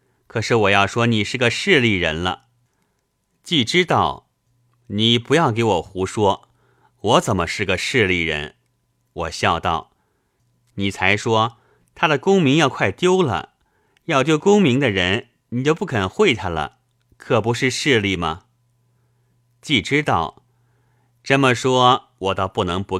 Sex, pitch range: male, 100-125 Hz